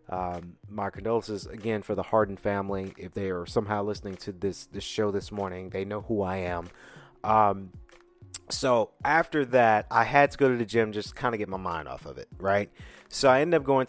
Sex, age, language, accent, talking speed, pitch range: male, 30-49, English, American, 215 wpm, 100-125 Hz